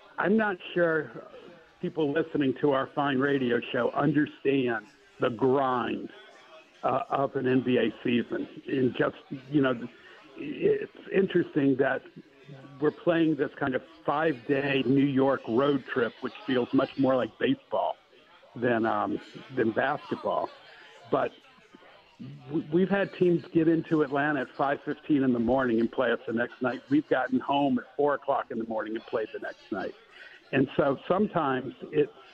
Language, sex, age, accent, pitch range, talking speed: English, male, 60-79, American, 130-165 Hz, 150 wpm